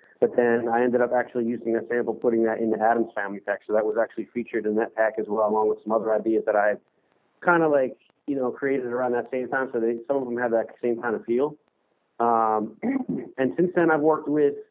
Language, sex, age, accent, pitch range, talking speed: English, male, 30-49, American, 110-125 Hz, 250 wpm